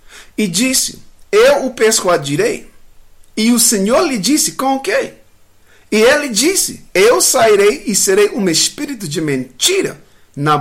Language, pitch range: English, 195-280 Hz